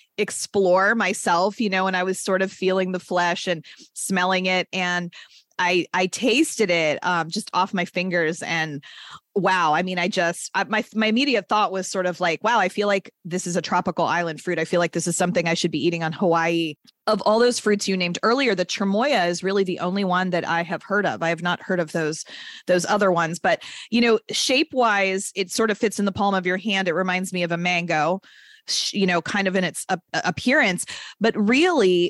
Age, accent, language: 30-49, American, English